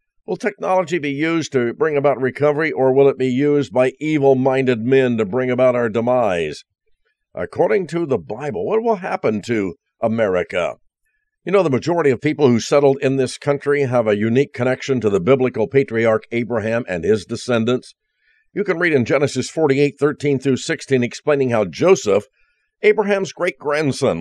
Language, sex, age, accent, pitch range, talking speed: English, male, 50-69, American, 125-160 Hz, 160 wpm